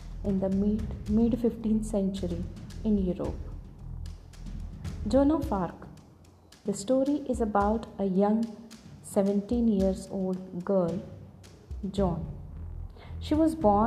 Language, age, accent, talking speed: English, 30-49, Indian, 105 wpm